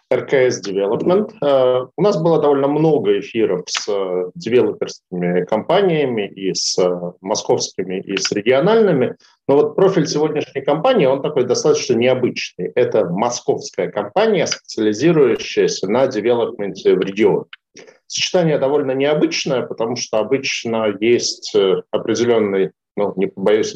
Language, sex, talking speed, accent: Russian, male, 115 wpm, native